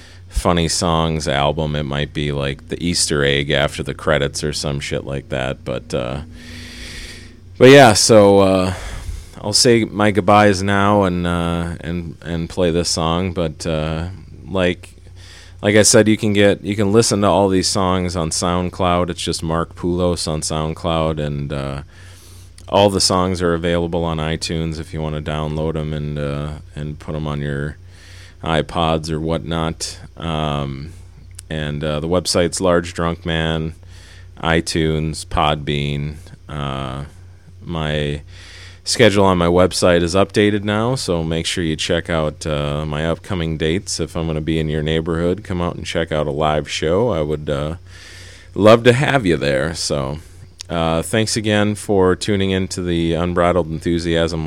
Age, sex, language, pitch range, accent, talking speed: 30-49, male, English, 80-90 Hz, American, 165 wpm